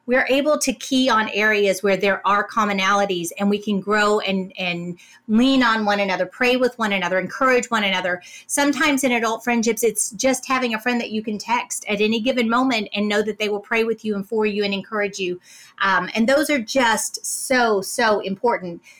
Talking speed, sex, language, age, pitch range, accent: 210 wpm, female, English, 30-49, 210-260 Hz, American